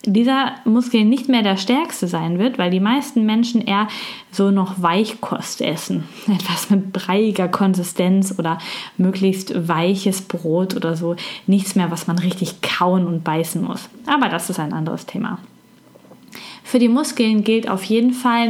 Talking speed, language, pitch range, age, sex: 160 wpm, German, 190-245 Hz, 20-39, female